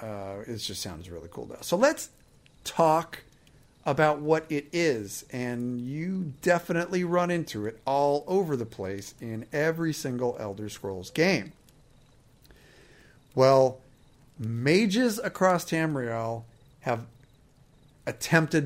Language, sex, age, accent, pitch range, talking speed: English, male, 50-69, American, 115-145 Hz, 115 wpm